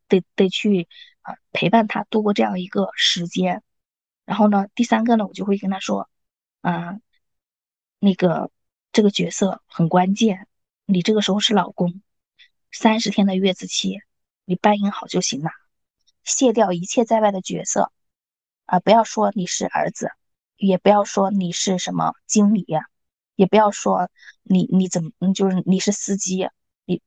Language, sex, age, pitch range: Chinese, female, 20-39, 185-230 Hz